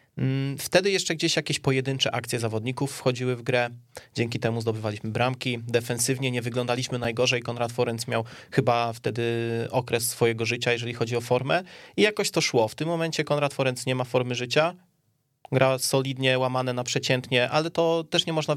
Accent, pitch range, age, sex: native, 120-145 Hz, 20-39, male